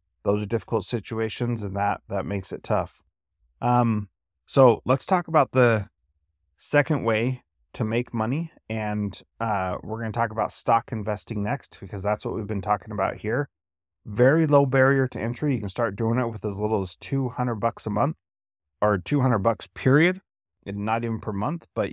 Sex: male